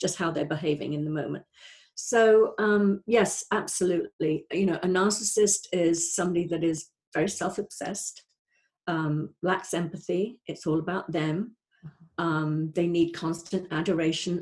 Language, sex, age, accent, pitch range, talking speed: English, female, 50-69, British, 165-205 Hz, 135 wpm